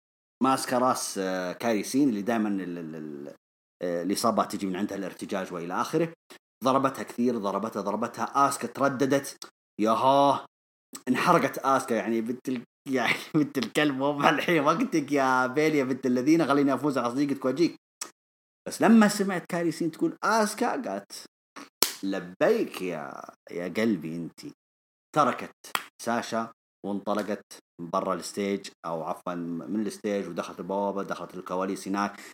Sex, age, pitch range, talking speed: male, 30-49, 100-165 Hz, 115 wpm